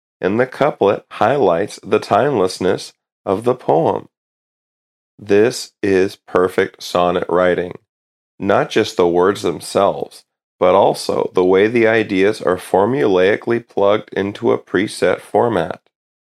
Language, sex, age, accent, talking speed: English, male, 30-49, American, 120 wpm